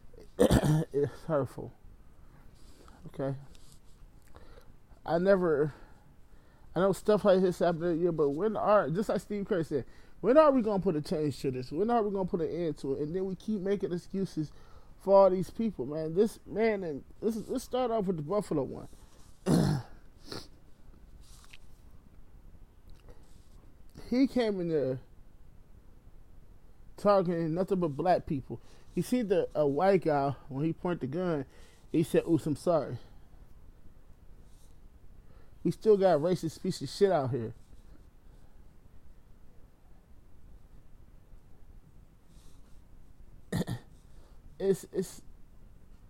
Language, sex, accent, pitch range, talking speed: English, male, American, 115-190 Hz, 130 wpm